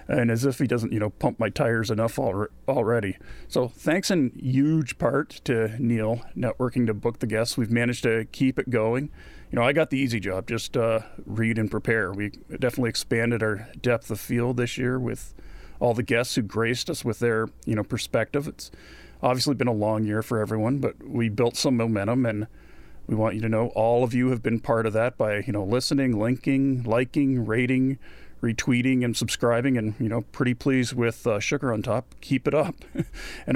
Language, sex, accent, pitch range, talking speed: English, male, American, 115-135 Hz, 205 wpm